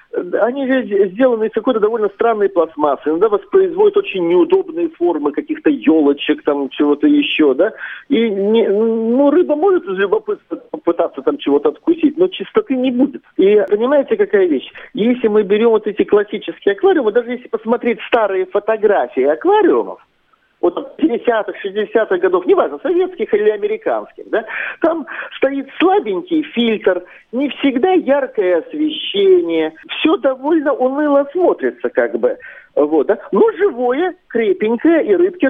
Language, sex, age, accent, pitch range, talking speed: Russian, male, 50-69, native, 215-350 Hz, 135 wpm